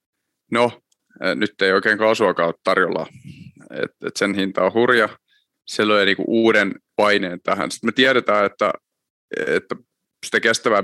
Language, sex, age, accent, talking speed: Finnish, male, 30-49, native, 145 wpm